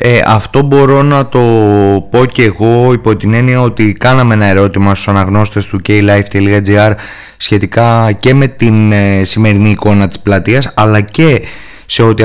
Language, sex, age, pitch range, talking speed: Greek, male, 20-39, 105-125 Hz, 150 wpm